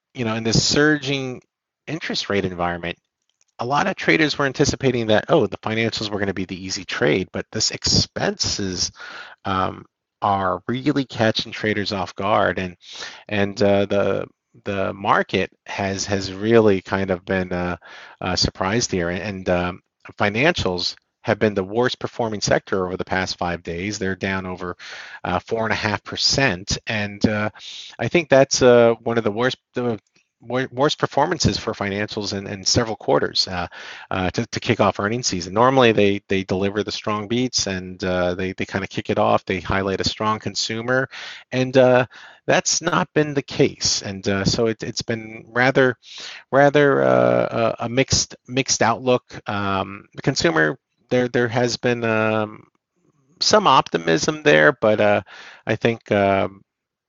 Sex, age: male, 40-59